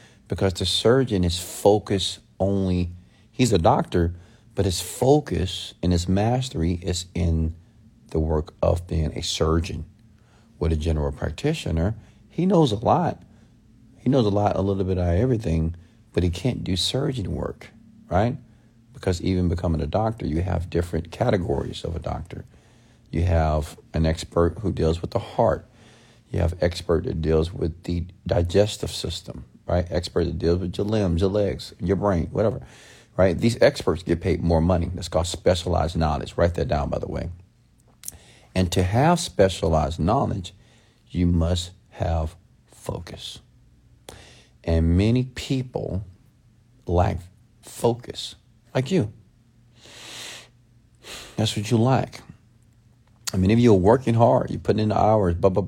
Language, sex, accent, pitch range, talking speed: English, male, American, 85-115 Hz, 150 wpm